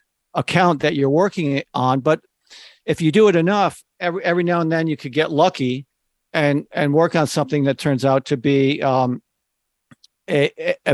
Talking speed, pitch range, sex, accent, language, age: 180 wpm, 140-165 Hz, male, American, English, 50-69